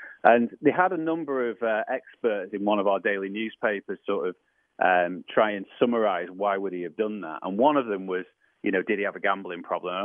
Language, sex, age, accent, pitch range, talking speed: English, male, 30-49, British, 100-140 Hz, 240 wpm